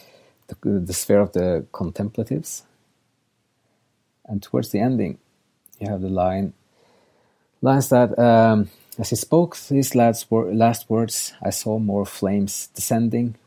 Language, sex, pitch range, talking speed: English, male, 95-115 Hz, 135 wpm